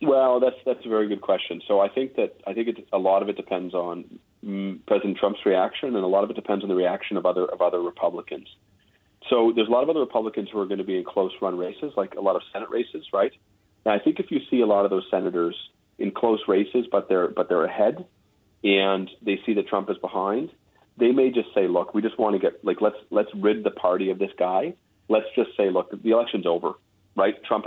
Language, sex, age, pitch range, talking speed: English, male, 40-59, 95-110 Hz, 245 wpm